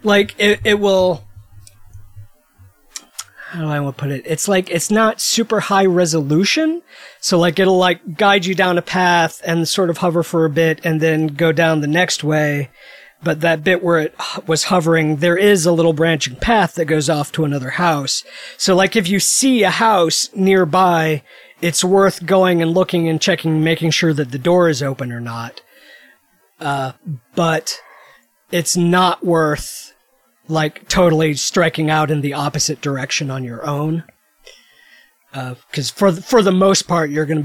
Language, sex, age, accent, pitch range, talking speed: English, male, 40-59, American, 150-190 Hz, 180 wpm